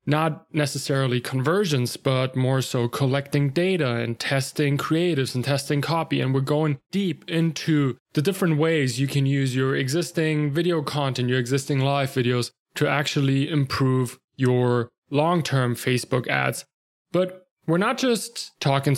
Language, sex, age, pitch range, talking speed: English, male, 20-39, 130-160 Hz, 145 wpm